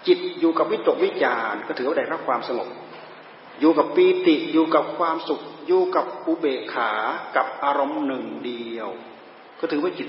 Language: Thai